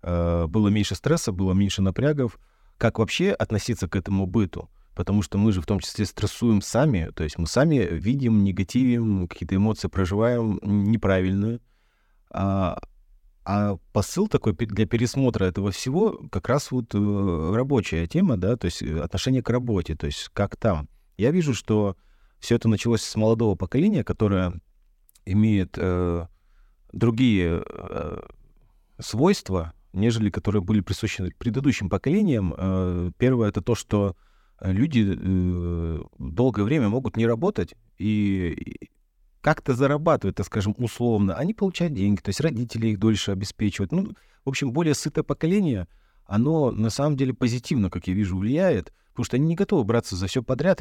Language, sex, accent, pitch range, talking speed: Russian, male, native, 95-120 Hz, 145 wpm